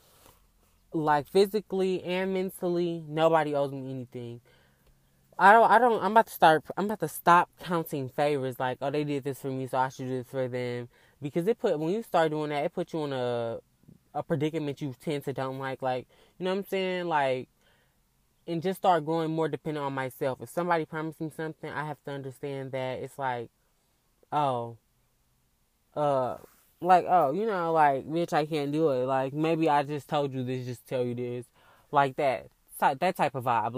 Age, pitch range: 20-39, 130-165 Hz